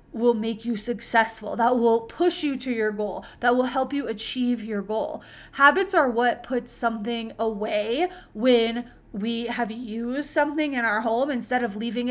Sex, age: female, 20-39